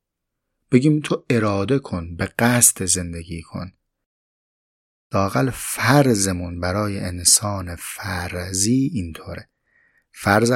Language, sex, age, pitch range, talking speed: Persian, male, 30-49, 90-120 Hz, 85 wpm